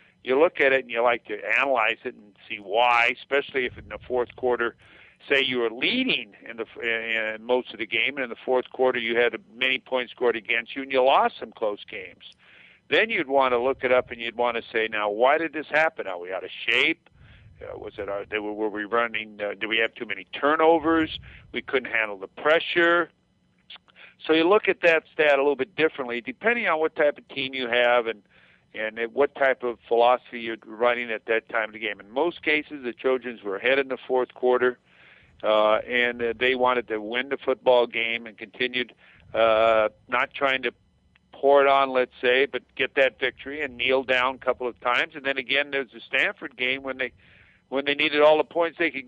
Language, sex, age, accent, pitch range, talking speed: English, male, 50-69, American, 115-140 Hz, 220 wpm